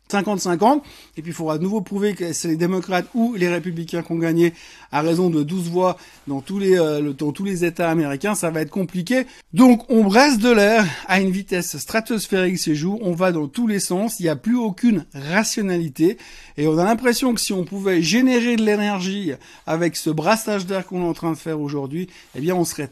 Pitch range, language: 165-215 Hz, French